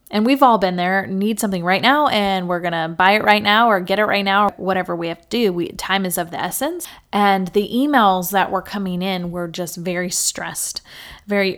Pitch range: 180-215 Hz